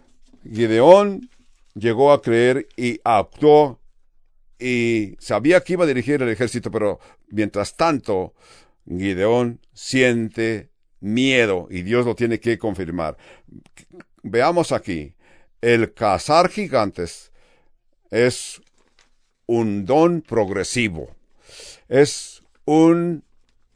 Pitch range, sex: 105-130 Hz, male